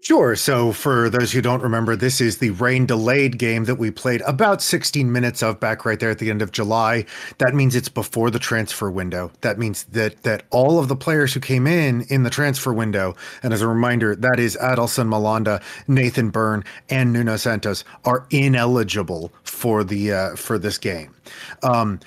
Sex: male